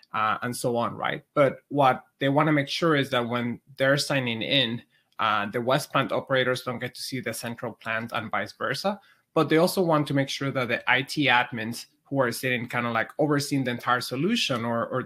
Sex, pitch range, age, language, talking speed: male, 120-140 Hz, 20-39, English, 225 wpm